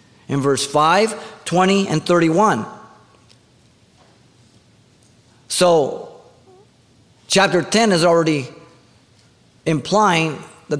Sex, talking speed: male, 70 wpm